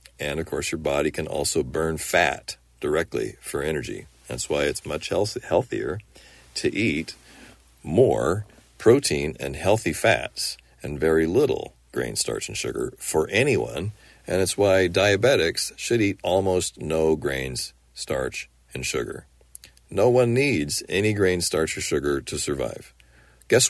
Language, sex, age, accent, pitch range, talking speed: English, male, 40-59, American, 65-95 Hz, 140 wpm